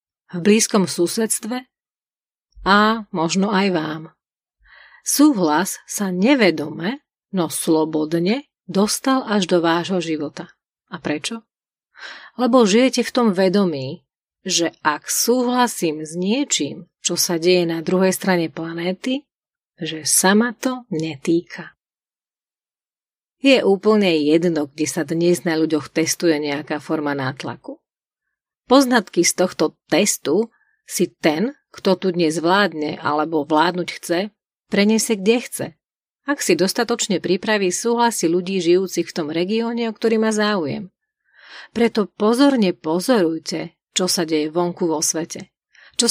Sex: female